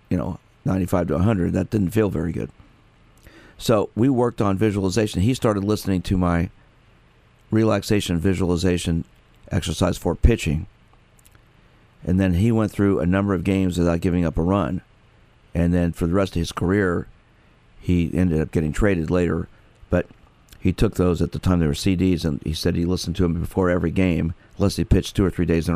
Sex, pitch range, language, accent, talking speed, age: male, 85-110 Hz, English, American, 190 wpm, 50-69